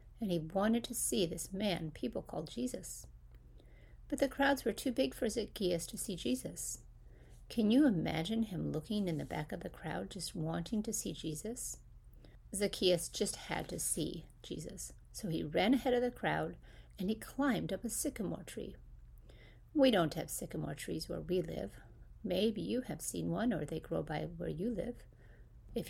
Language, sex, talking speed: English, female, 180 wpm